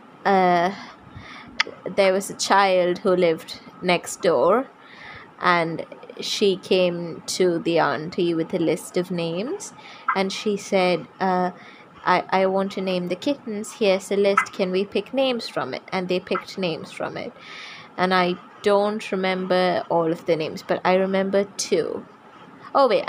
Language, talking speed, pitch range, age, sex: English, 155 wpm, 180-215 Hz, 20-39, female